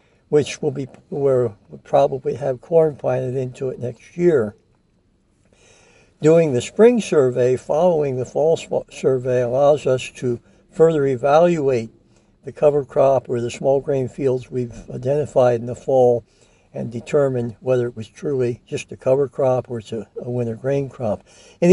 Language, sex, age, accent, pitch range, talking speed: English, male, 60-79, American, 120-145 Hz, 155 wpm